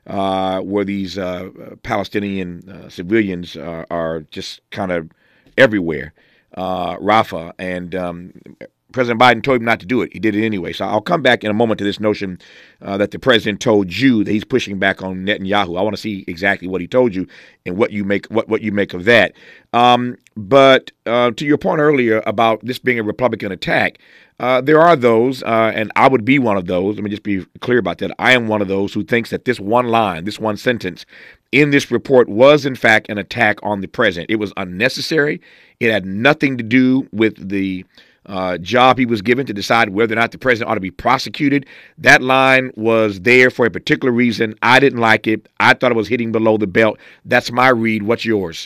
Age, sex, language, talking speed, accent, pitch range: 50-69, male, English, 220 wpm, American, 95-125 Hz